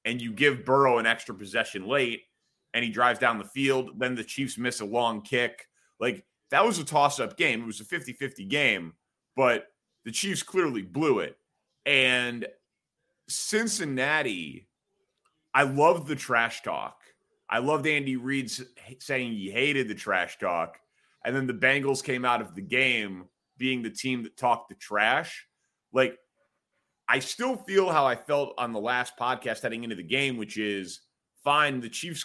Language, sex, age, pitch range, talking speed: English, male, 30-49, 115-145 Hz, 170 wpm